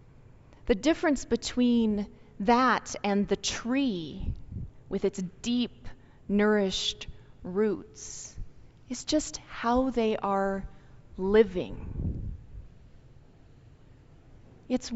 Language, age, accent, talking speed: English, 30-49, American, 75 wpm